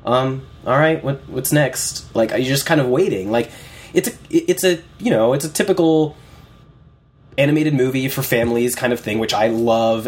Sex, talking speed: male, 185 wpm